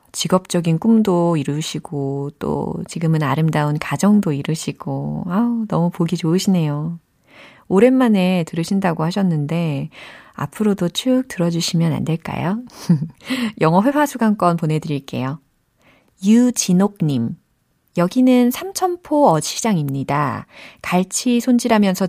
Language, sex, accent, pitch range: Korean, female, native, 160-230 Hz